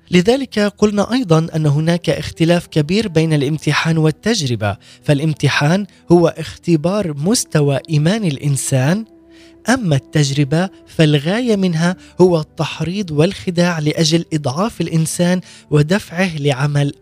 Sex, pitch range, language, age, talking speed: male, 150-195 Hz, Arabic, 20-39, 100 wpm